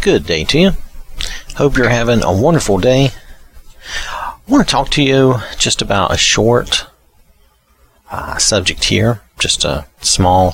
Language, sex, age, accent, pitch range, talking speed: English, male, 40-59, American, 90-125 Hz, 150 wpm